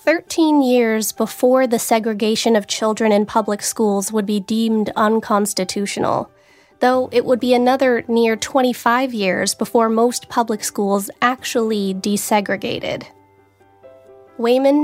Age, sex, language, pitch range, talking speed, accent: 20-39, female, English, 205-255 Hz, 115 wpm, American